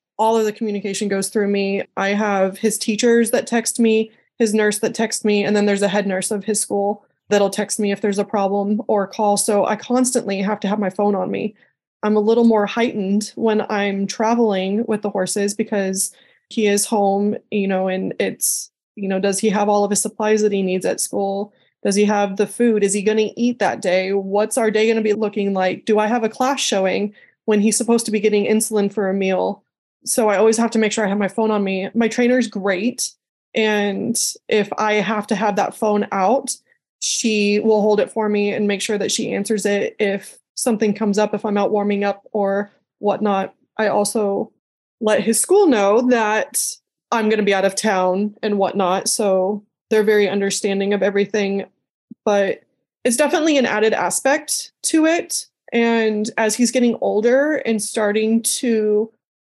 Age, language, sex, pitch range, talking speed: 20-39, English, female, 200-225 Hz, 205 wpm